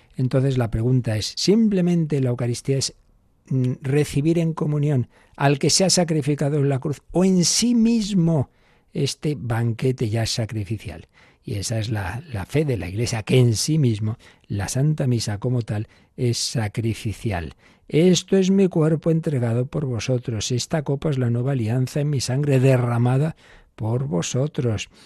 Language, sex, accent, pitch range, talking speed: Spanish, male, Spanish, 115-145 Hz, 160 wpm